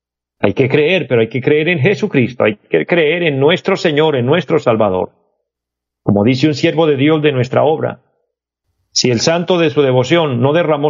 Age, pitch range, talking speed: 40-59, 115-155 Hz, 195 wpm